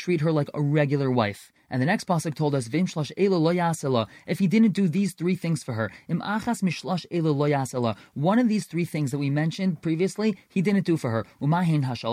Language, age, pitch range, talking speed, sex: English, 20-39, 145-185 Hz, 180 wpm, male